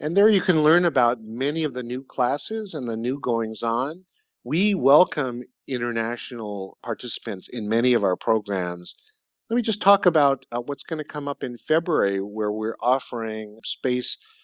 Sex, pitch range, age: male, 115-155 Hz, 50-69